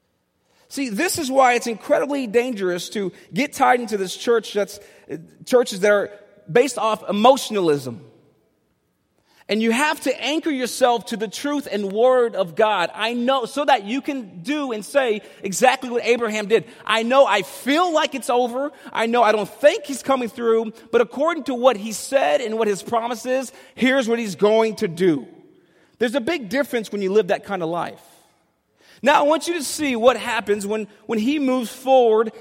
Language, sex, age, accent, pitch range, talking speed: English, male, 30-49, American, 205-260 Hz, 190 wpm